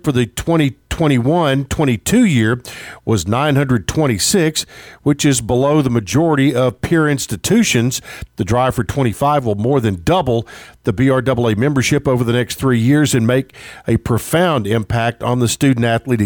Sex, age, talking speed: male, 50-69, 140 wpm